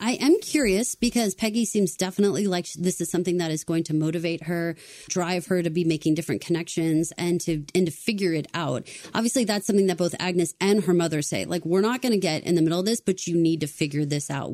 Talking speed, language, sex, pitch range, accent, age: 245 wpm, English, female, 160-200 Hz, American, 30-49